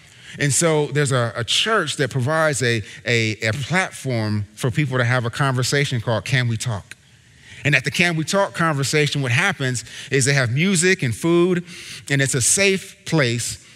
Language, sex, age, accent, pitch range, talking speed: English, male, 30-49, American, 125-155 Hz, 185 wpm